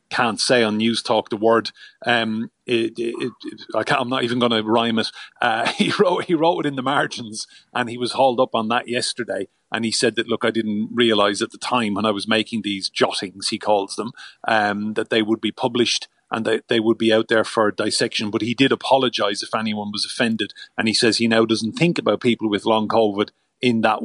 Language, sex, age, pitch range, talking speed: English, male, 30-49, 110-120 Hz, 235 wpm